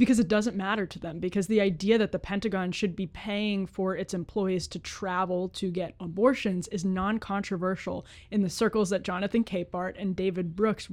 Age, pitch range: 20-39, 190-235 Hz